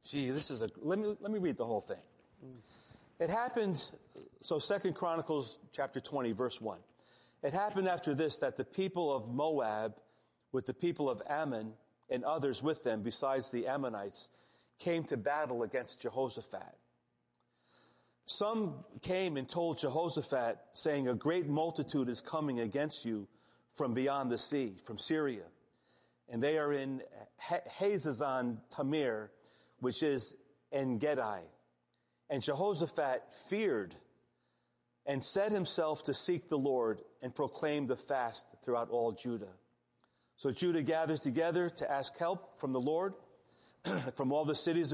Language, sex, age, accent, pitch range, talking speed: English, male, 40-59, American, 125-160 Hz, 145 wpm